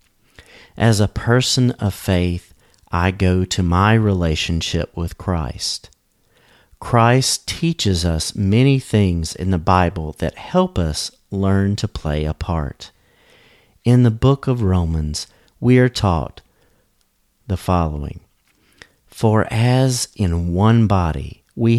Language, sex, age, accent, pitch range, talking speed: English, male, 40-59, American, 90-120 Hz, 120 wpm